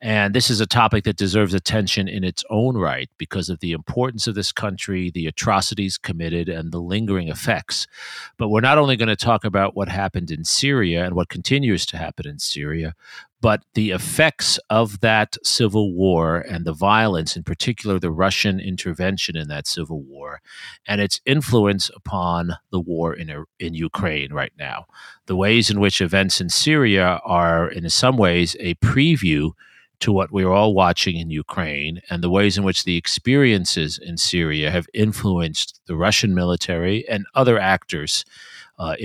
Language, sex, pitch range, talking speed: English, male, 85-105 Hz, 175 wpm